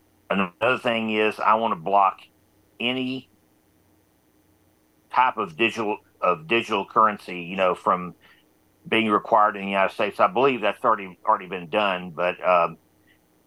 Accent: American